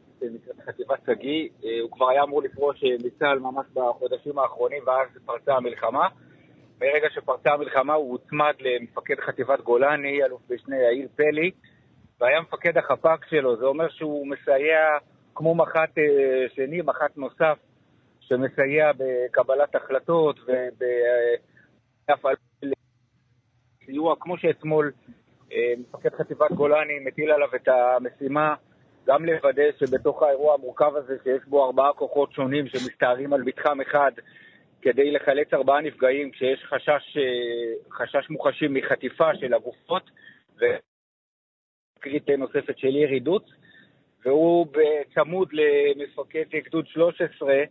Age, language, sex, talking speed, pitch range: 50-69, Hebrew, male, 115 wpm, 130-155 Hz